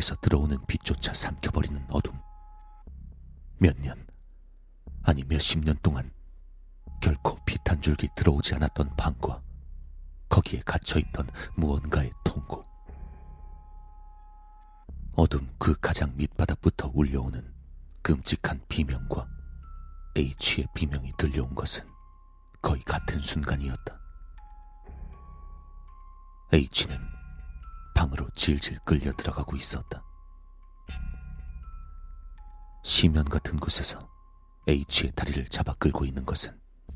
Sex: male